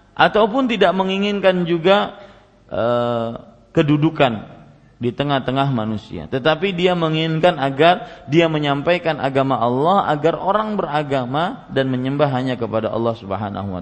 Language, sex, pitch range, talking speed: Malay, male, 115-165 Hz, 115 wpm